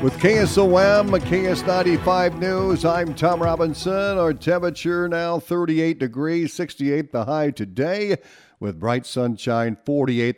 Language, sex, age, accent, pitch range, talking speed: English, male, 50-69, American, 120-155 Hz, 115 wpm